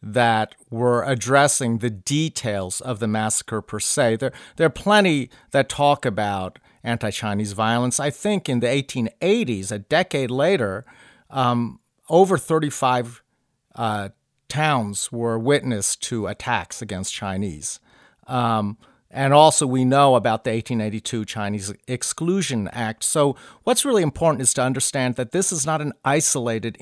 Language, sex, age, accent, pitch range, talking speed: English, male, 40-59, American, 115-155 Hz, 140 wpm